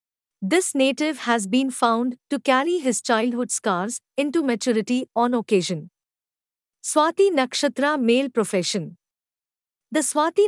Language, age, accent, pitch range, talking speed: English, 50-69, Indian, 220-290 Hz, 115 wpm